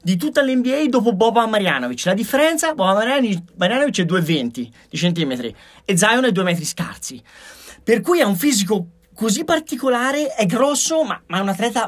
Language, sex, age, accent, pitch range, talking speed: Italian, male, 30-49, native, 180-240 Hz, 170 wpm